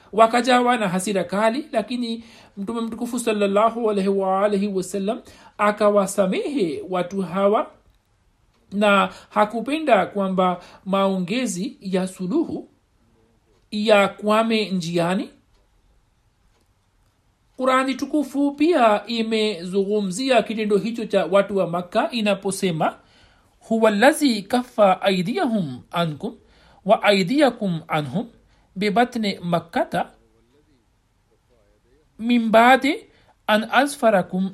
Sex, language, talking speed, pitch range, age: male, Swahili, 80 wpm, 180-230 Hz, 60-79